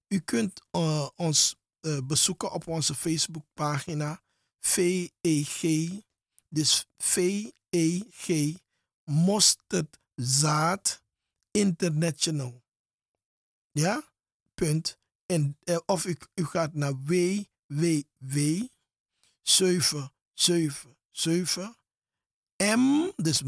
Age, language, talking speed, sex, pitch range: 50-69, Dutch, 80 wpm, male, 145-185 Hz